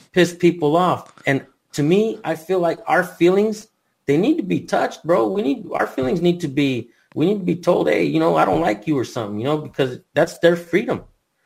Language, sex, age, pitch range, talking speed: English, male, 30-49, 115-150 Hz, 230 wpm